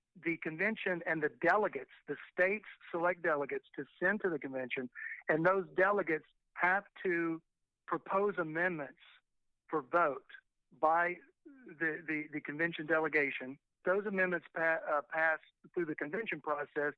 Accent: American